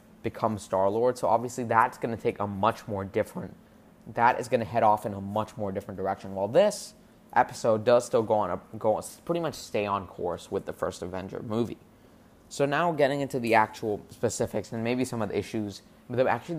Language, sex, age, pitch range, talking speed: English, male, 20-39, 100-120 Hz, 215 wpm